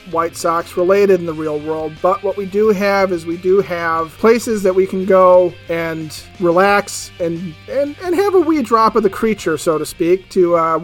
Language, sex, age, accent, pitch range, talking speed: English, male, 40-59, American, 165-200 Hz, 210 wpm